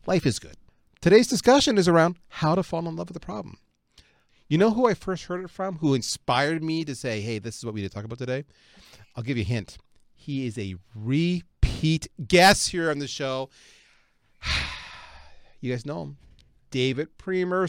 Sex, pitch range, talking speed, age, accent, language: male, 125-190 Hz, 195 wpm, 40-59, American, English